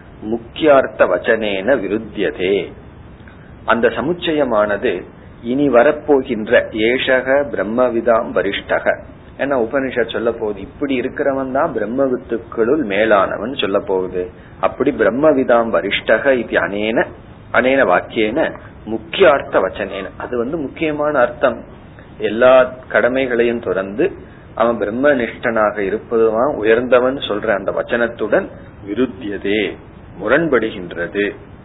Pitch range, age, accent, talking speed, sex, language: 105-130 Hz, 40-59, native, 90 wpm, male, Tamil